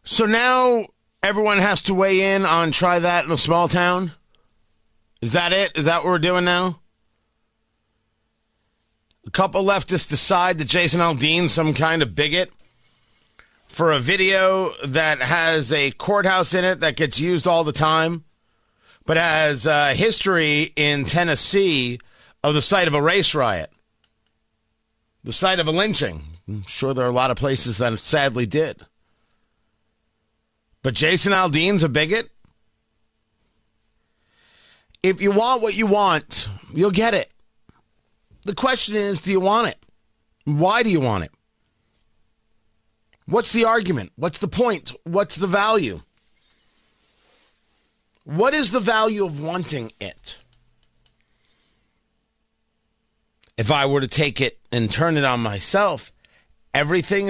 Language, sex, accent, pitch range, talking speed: English, male, American, 120-190 Hz, 140 wpm